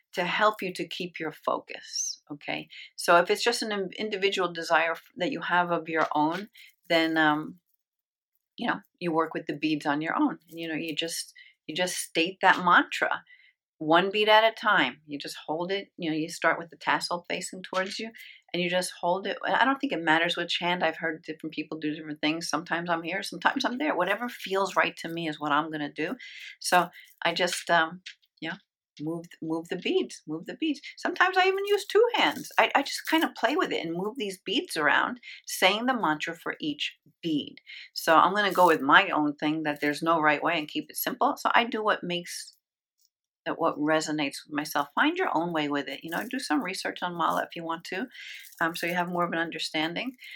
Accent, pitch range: American, 160-215 Hz